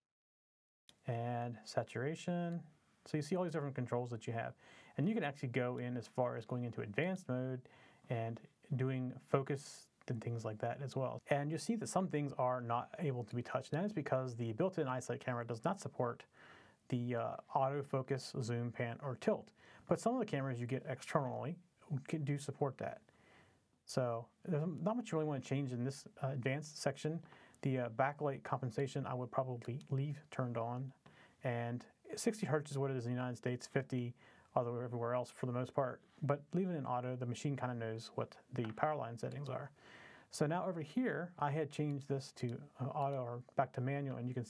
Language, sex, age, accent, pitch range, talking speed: English, male, 30-49, American, 120-145 Hz, 210 wpm